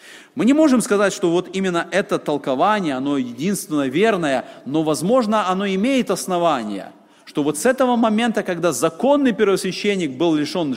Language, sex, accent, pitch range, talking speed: Russian, male, native, 150-205 Hz, 150 wpm